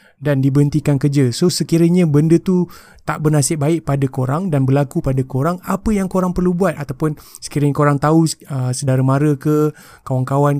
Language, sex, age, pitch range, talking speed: Malay, male, 20-39, 140-165 Hz, 170 wpm